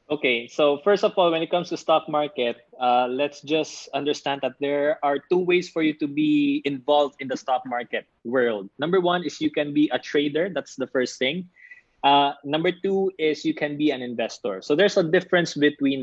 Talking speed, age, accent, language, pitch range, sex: 210 wpm, 20-39, native, Filipino, 130-165 Hz, male